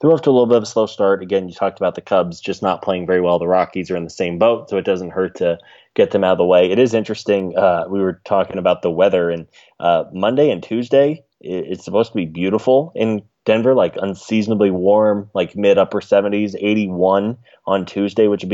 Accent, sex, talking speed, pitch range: American, male, 235 wpm, 90-105 Hz